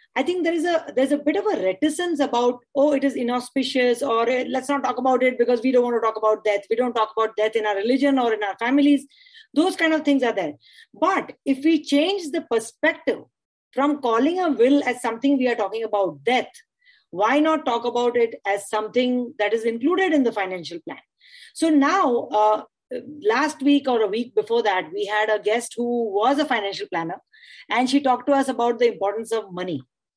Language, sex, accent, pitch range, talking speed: English, female, Indian, 235-300 Hz, 215 wpm